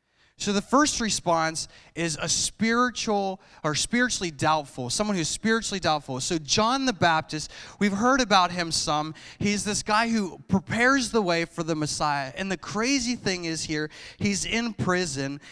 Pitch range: 135-215 Hz